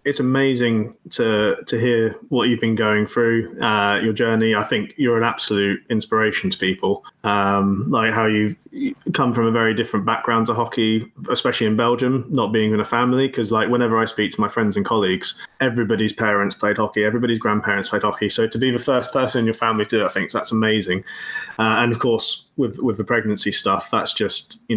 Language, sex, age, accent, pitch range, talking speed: English, male, 20-39, British, 110-135 Hz, 210 wpm